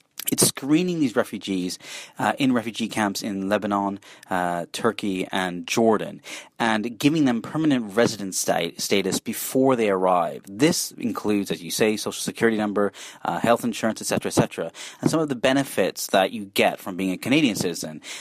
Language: English